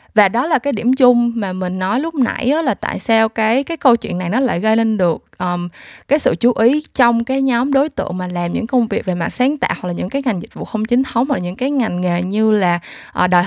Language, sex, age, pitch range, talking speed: Vietnamese, female, 20-39, 195-265 Hz, 270 wpm